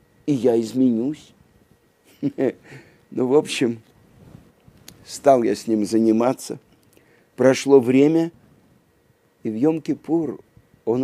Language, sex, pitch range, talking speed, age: Russian, male, 115-165 Hz, 90 wpm, 50-69